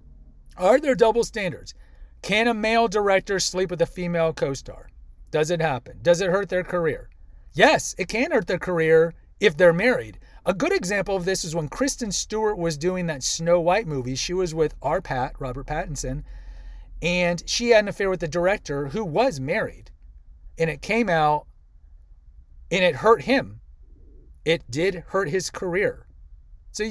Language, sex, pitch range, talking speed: English, male, 130-200 Hz, 170 wpm